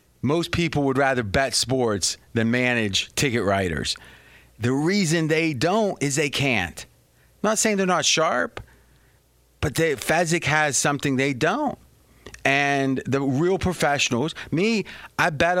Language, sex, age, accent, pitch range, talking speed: English, male, 30-49, American, 115-165 Hz, 140 wpm